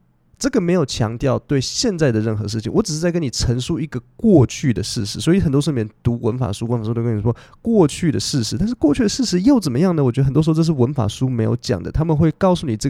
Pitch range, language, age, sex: 110-155 Hz, Chinese, 20-39, male